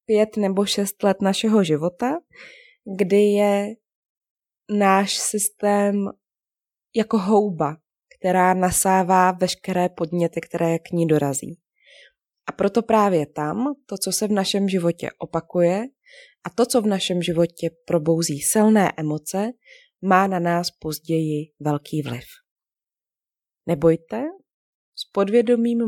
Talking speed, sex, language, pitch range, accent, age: 115 wpm, female, Czech, 170-215 Hz, native, 20-39